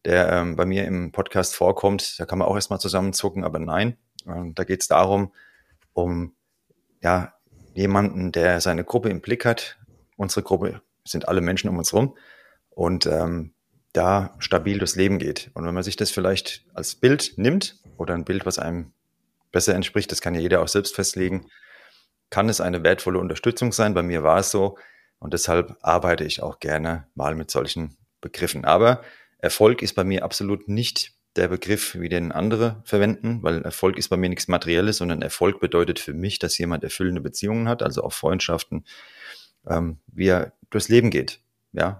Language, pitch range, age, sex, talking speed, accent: German, 90-105 Hz, 30-49, male, 180 wpm, German